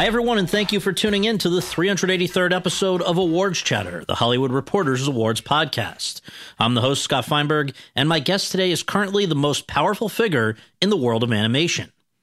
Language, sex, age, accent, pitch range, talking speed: English, male, 40-59, American, 120-170 Hz, 195 wpm